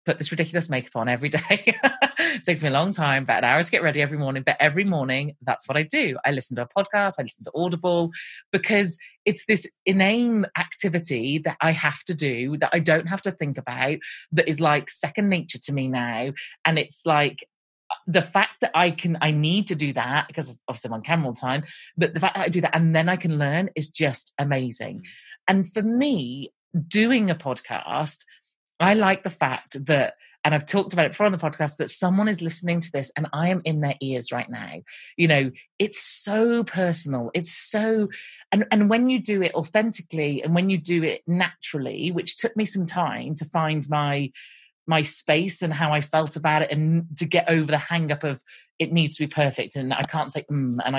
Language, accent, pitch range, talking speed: English, British, 145-190 Hz, 220 wpm